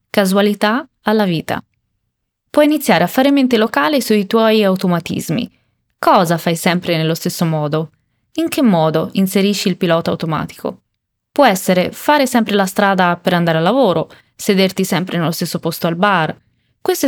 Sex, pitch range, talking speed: female, 180-235 Hz, 150 wpm